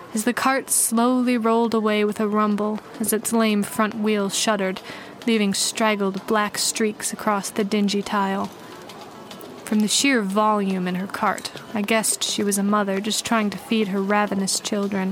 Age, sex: 20-39, female